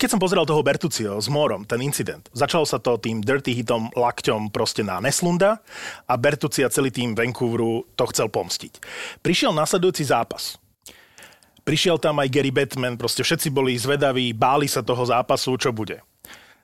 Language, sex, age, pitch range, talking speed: Slovak, male, 30-49, 125-160 Hz, 165 wpm